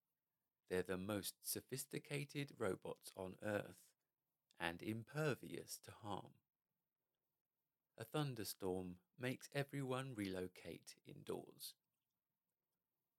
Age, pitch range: 40-59, 95-135 Hz